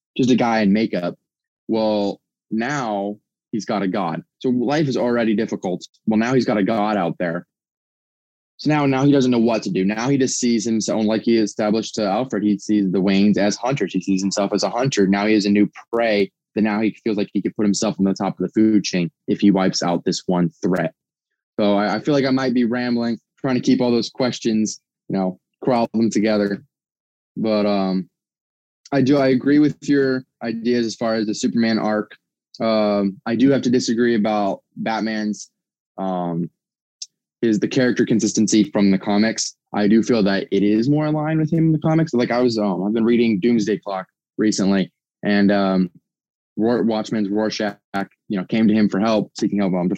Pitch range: 100-120 Hz